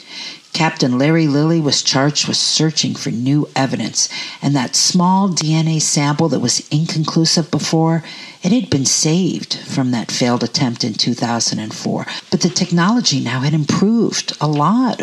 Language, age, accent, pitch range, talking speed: English, 50-69, American, 130-165 Hz, 150 wpm